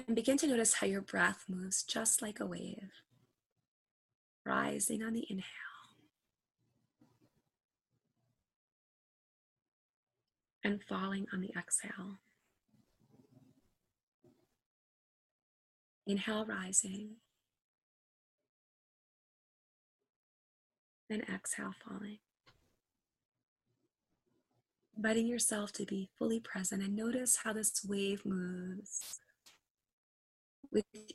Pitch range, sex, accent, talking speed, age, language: 195-230 Hz, female, American, 75 wpm, 30-49, English